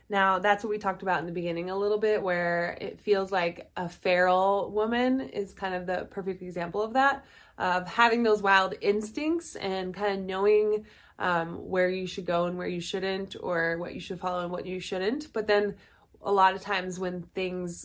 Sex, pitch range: female, 180-205 Hz